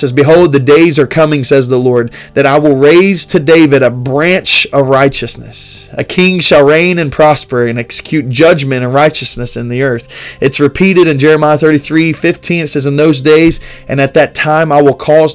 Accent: American